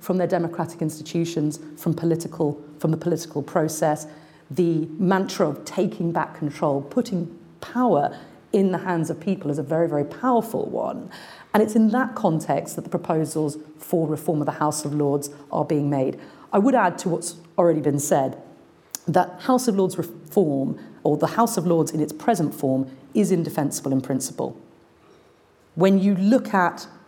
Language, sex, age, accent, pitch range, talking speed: English, female, 40-59, British, 155-185 Hz, 170 wpm